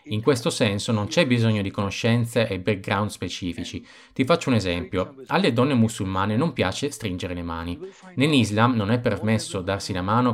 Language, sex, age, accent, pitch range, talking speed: Italian, male, 20-39, native, 95-125 Hz, 175 wpm